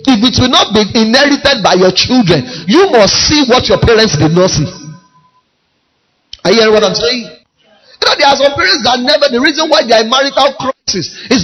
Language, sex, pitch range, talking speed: English, male, 165-245 Hz, 215 wpm